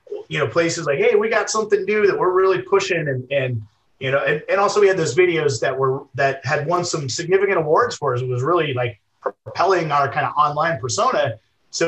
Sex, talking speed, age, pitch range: male, 225 wpm, 30-49, 130-185 Hz